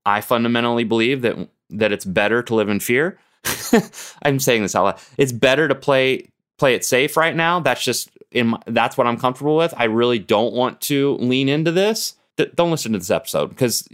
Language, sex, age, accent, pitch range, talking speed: English, male, 30-49, American, 105-140 Hz, 205 wpm